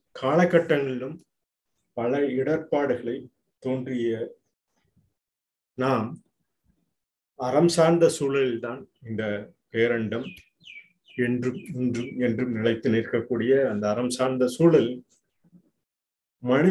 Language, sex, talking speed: Tamil, male, 70 wpm